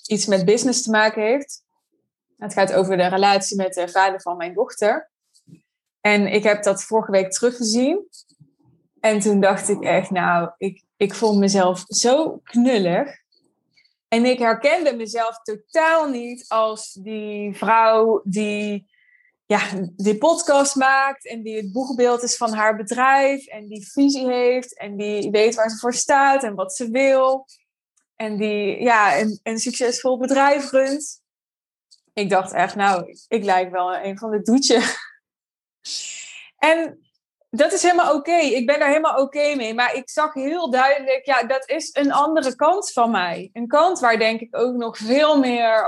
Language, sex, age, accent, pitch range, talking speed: Dutch, female, 20-39, Dutch, 210-270 Hz, 160 wpm